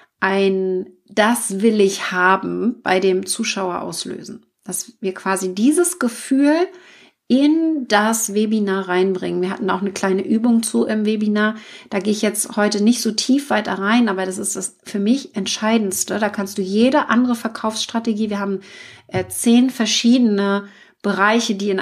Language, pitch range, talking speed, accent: German, 190-230 Hz, 155 wpm, German